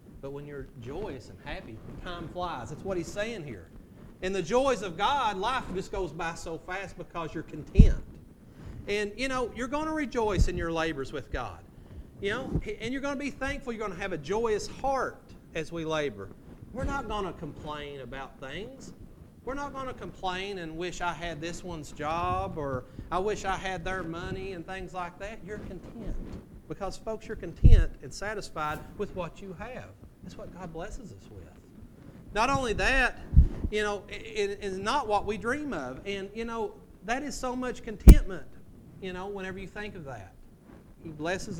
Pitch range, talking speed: 165-230 Hz, 195 wpm